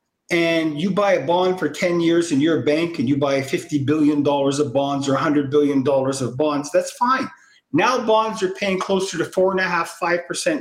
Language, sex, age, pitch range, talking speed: English, male, 50-69, 165-225 Hz, 215 wpm